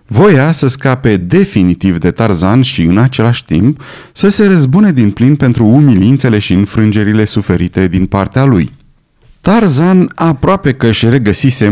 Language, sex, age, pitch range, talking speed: Romanian, male, 30-49, 105-145 Hz, 145 wpm